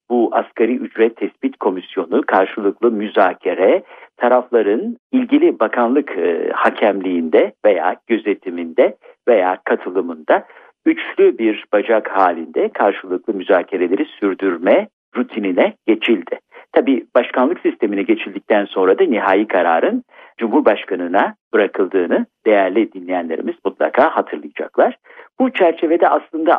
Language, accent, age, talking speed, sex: Turkish, native, 50-69, 95 wpm, male